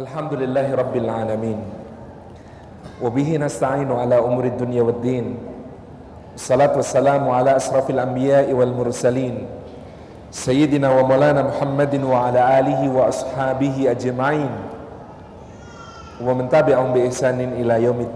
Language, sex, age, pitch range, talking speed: Indonesian, male, 40-59, 125-155 Hz, 105 wpm